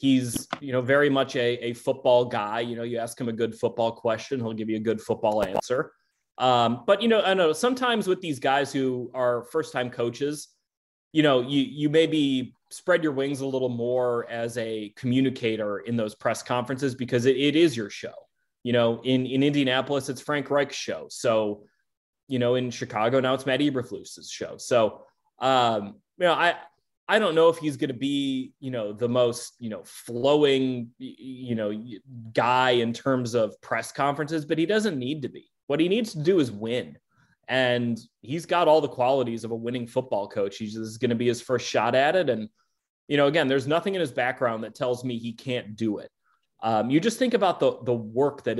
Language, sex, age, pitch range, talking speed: English, male, 30-49, 120-145 Hz, 210 wpm